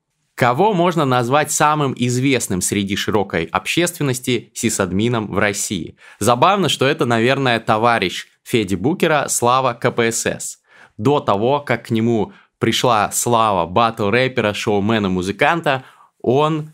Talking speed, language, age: 110 wpm, Russian, 20-39